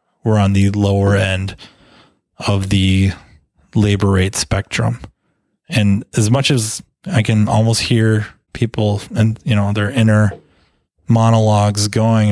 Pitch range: 100-115 Hz